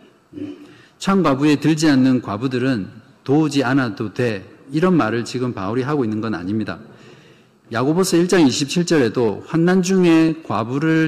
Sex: male